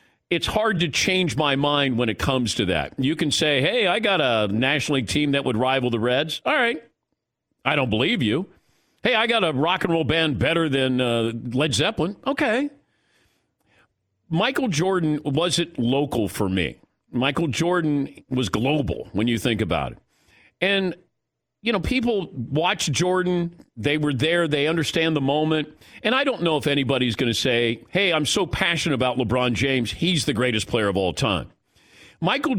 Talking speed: 180 wpm